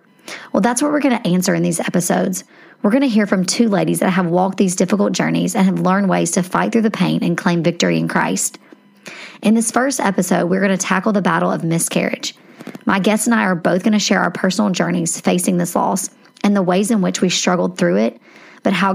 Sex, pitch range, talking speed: male, 180-225 Hz, 240 wpm